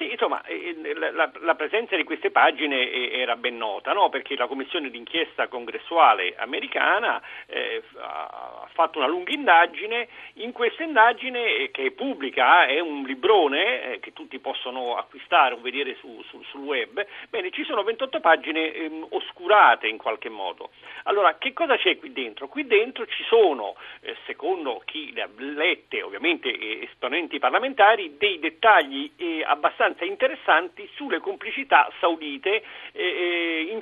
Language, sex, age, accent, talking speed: Italian, male, 50-69, native, 130 wpm